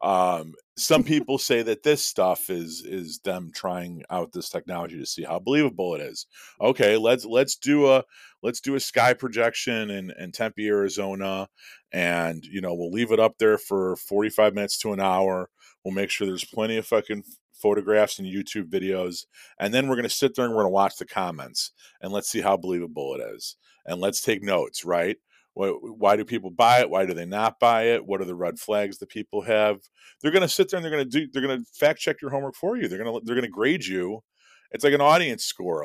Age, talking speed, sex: 40-59, 230 wpm, male